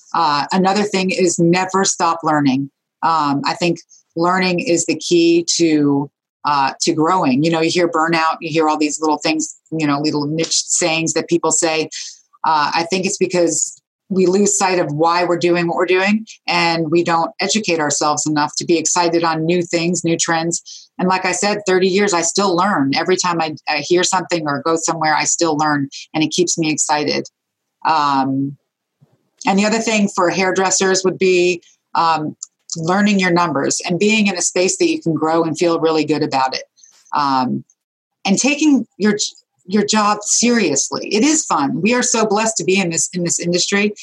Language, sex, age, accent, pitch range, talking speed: English, female, 30-49, American, 160-195 Hz, 190 wpm